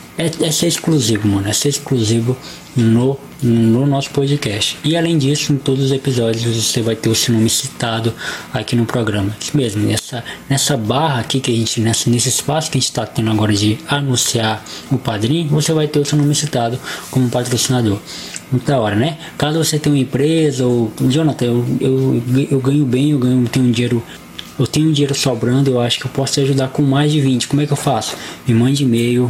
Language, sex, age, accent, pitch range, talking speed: Portuguese, male, 20-39, Brazilian, 115-140 Hz, 210 wpm